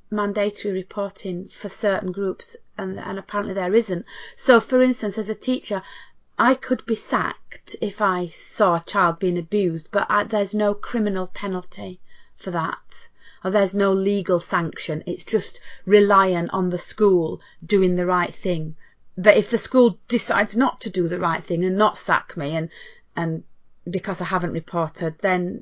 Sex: female